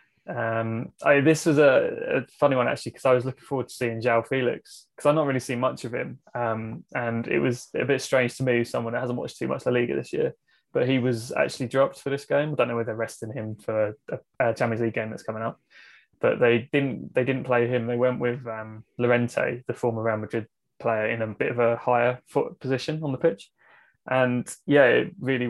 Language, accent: English, British